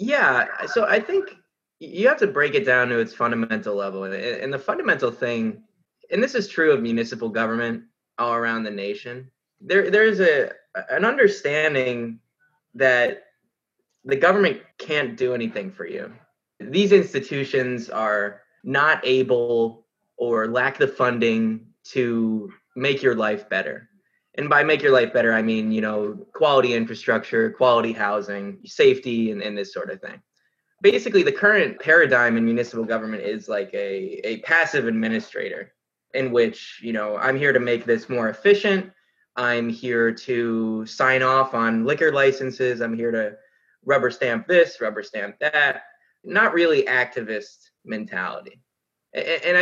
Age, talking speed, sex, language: 20-39, 150 wpm, male, English